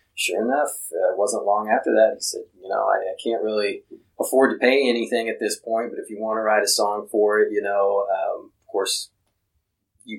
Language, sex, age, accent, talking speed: English, male, 30-49, American, 230 wpm